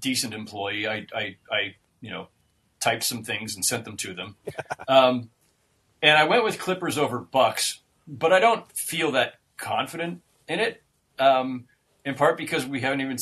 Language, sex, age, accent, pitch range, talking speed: English, male, 40-59, American, 115-145 Hz, 175 wpm